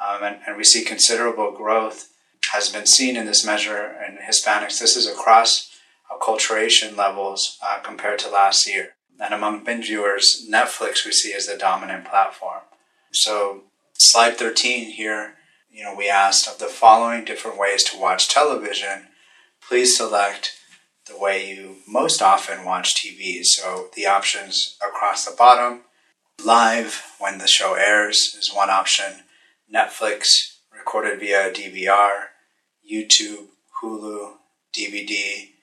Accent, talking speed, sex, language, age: American, 140 wpm, male, English, 30-49